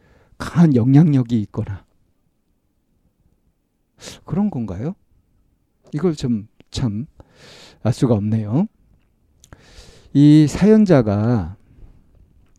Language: Korean